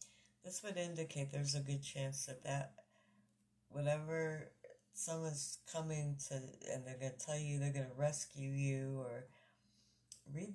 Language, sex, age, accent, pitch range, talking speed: English, female, 60-79, American, 110-145 Hz, 150 wpm